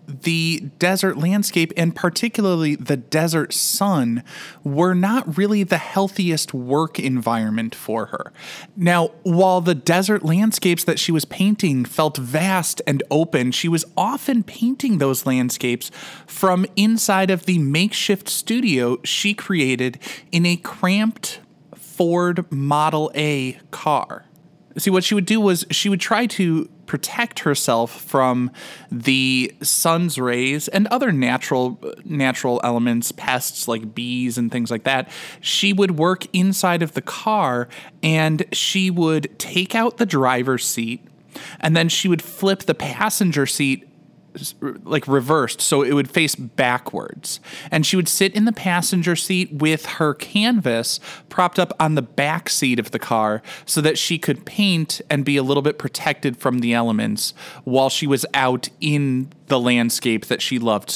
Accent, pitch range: American, 130-185 Hz